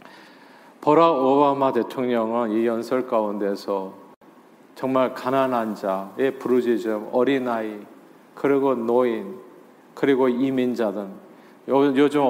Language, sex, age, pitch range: Korean, male, 40-59, 115-160 Hz